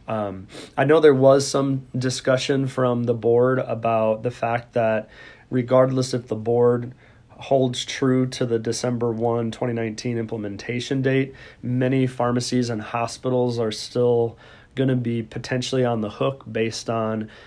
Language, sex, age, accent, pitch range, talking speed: English, male, 30-49, American, 110-125 Hz, 145 wpm